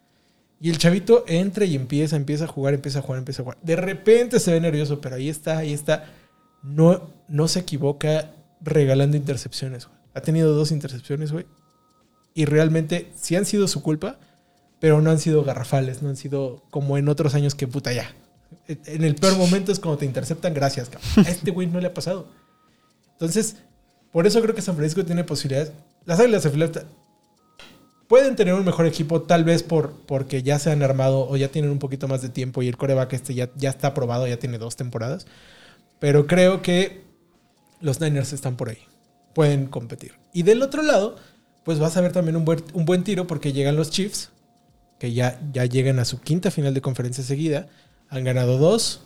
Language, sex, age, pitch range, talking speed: Spanish, male, 20-39, 140-175 Hz, 200 wpm